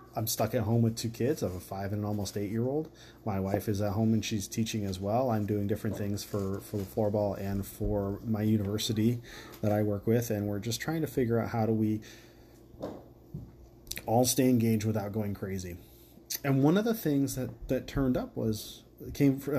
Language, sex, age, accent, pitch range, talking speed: English, male, 30-49, American, 105-125 Hz, 230 wpm